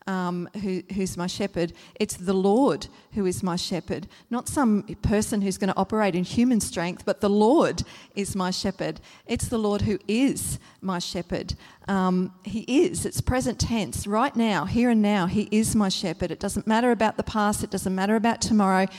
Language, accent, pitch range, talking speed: English, Australian, 185-210 Hz, 205 wpm